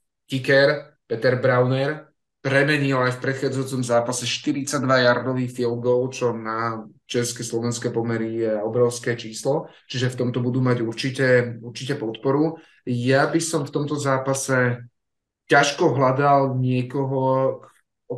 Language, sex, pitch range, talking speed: Slovak, male, 120-135 Hz, 120 wpm